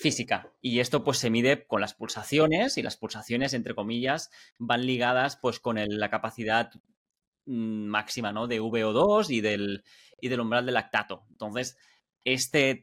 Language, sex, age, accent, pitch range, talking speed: Spanish, male, 30-49, Spanish, 110-130 Hz, 160 wpm